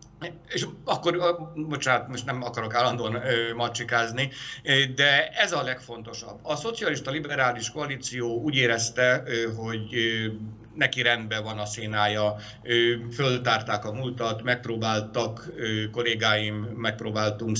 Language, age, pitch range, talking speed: Hungarian, 60-79, 115-140 Hz, 100 wpm